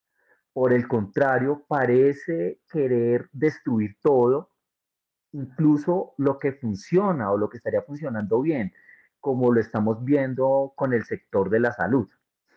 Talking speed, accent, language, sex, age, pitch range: 130 wpm, Colombian, Spanish, male, 30-49, 110-145 Hz